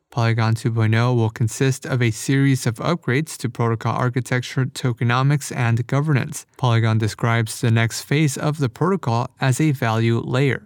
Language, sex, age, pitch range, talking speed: English, male, 20-39, 115-140 Hz, 150 wpm